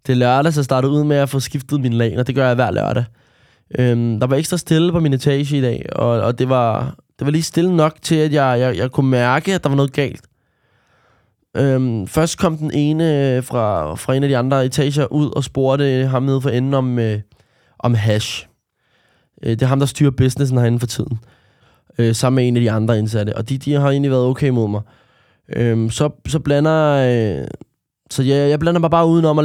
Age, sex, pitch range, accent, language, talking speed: 20-39, male, 120-150 Hz, native, Danish, 230 wpm